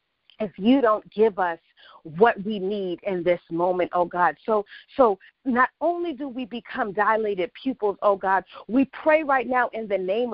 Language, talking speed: English, 180 wpm